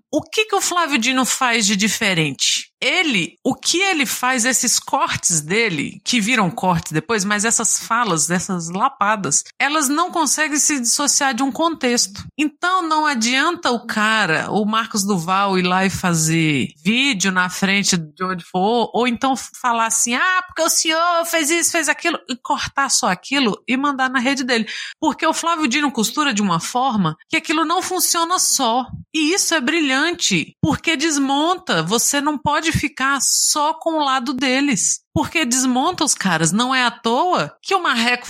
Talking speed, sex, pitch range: 175 wpm, female, 205-310 Hz